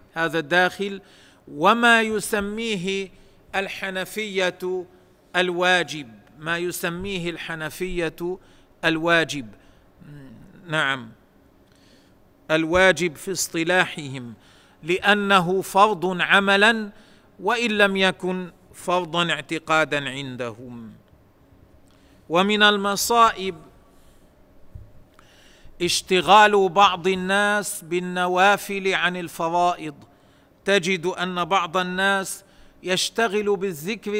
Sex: male